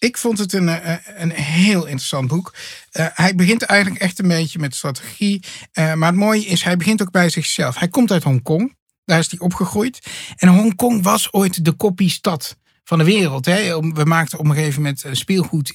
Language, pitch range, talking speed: Dutch, 145-180 Hz, 200 wpm